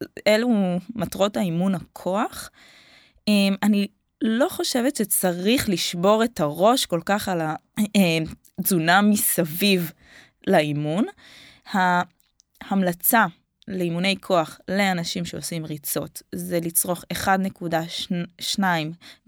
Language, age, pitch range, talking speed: Hebrew, 20-39, 175-210 Hz, 80 wpm